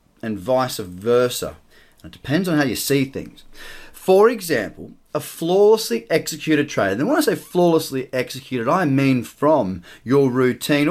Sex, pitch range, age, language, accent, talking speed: male, 125-180 Hz, 30-49, English, Australian, 150 wpm